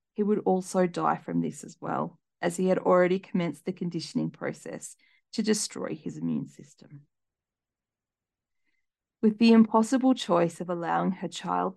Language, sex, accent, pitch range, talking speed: English, female, Australian, 175-225 Hz, 150 wpm